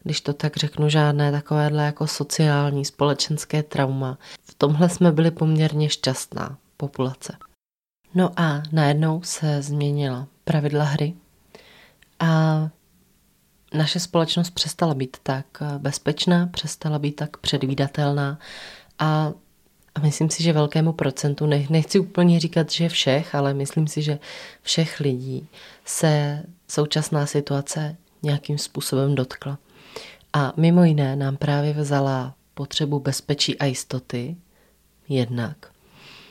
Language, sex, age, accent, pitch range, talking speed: Czech, female, 20-39, native, 140-155 Hz, 115 wpm